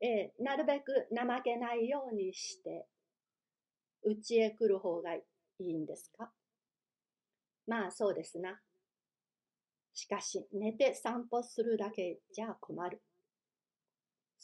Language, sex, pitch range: Japanese, female, 195-250 Hz